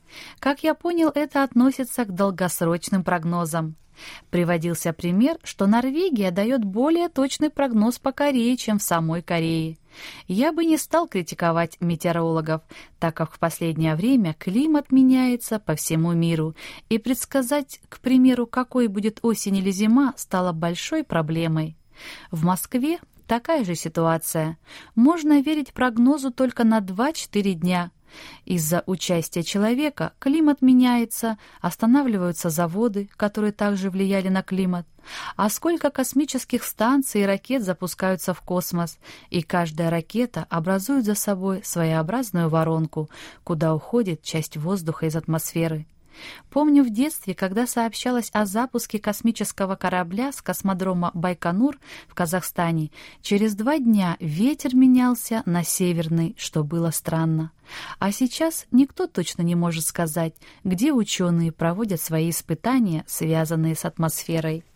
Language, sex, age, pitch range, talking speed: Russian, female, 20-39, 170-250 Hz, 125 wpm